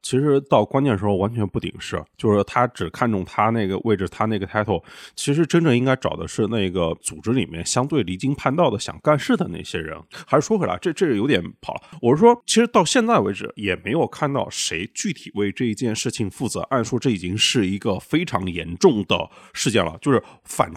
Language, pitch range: Chinese, 95-140 Hz